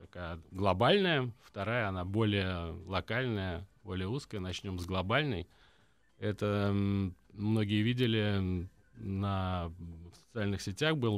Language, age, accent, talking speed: Russian, 30-49, native, 95 wpm